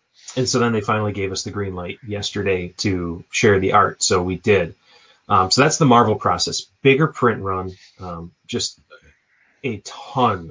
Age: 30-49